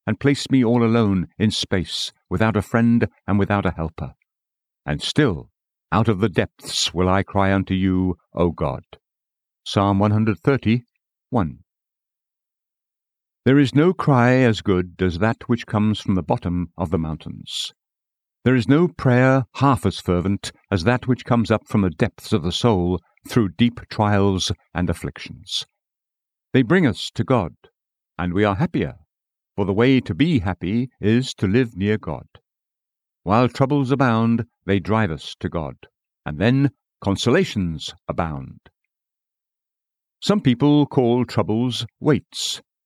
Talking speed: 150 wpm